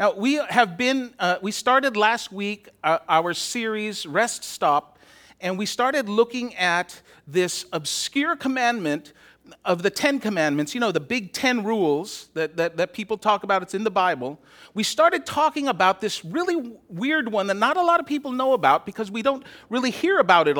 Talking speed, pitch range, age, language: 190 wpm, 195-275 Hz, 40-59, English